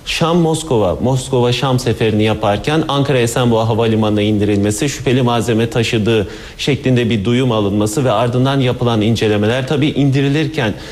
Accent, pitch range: native, 115-140 Hz